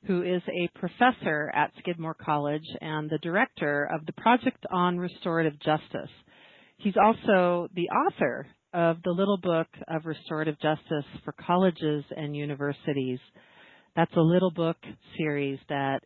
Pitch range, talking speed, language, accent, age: 145-175 Hz, 140 wpm, English, American, 40-59